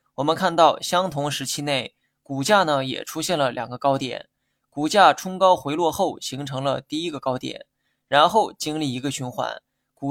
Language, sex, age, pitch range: Chinese, male, 20-39, 135-170 Hz